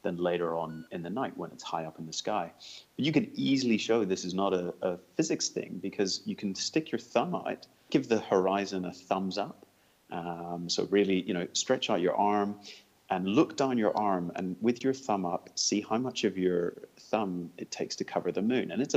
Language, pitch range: English, 90-110 Hz